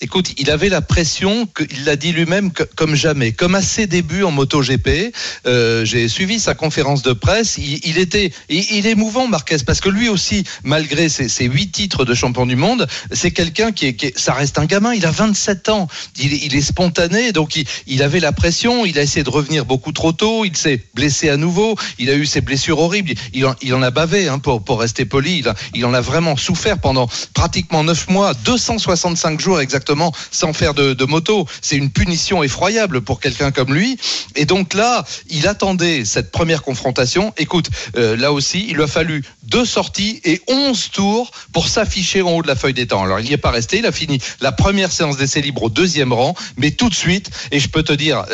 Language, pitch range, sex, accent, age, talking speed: French, 135-185 Hz, male, French, 40-59, 225 wpm